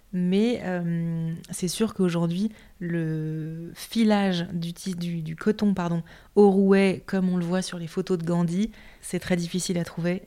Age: 20-39